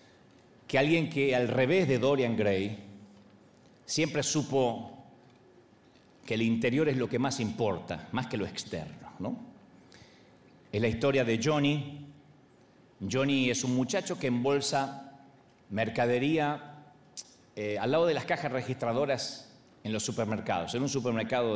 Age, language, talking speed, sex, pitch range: 40-59, Spanish, 130 wpm, male, 120-170 Hz